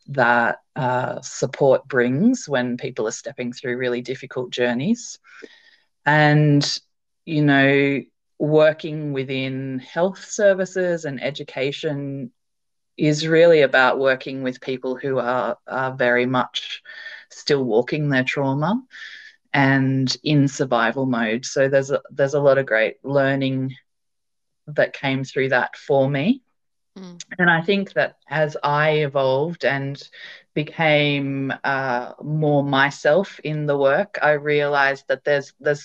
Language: English